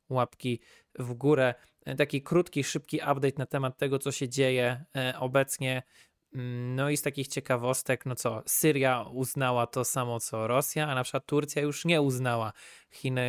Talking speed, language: 160 wpm, Polish